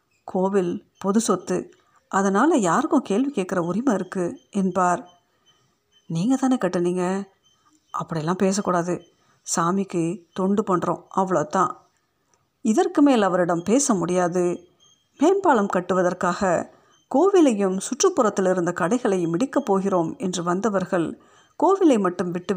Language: Tamil